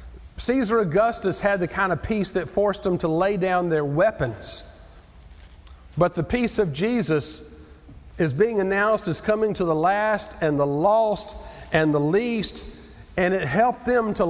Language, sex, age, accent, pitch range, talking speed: English, male, 40-59, American, 170-225 Hz, 165 wpm